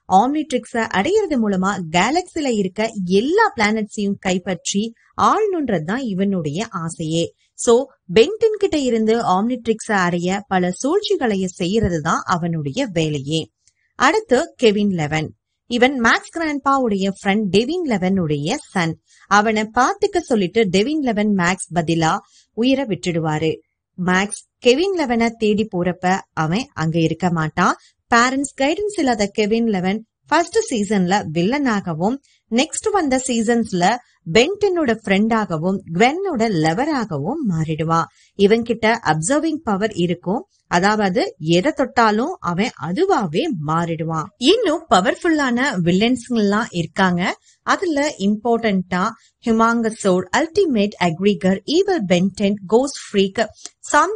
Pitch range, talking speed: 185-255 Hz, 80 wpm